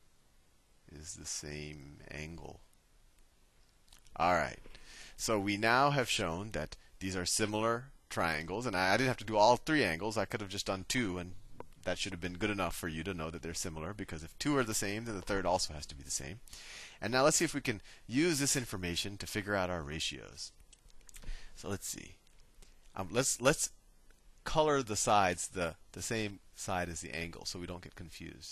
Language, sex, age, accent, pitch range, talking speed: English, male, 30-49, American, 85-110 Hz, 200 wpm